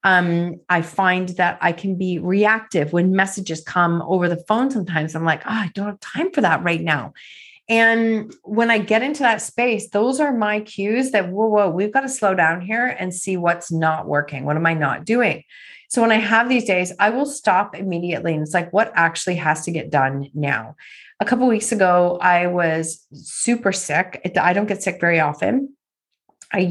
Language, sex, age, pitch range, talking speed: English, female, 30-49, 175-225 Hz, 205 wpm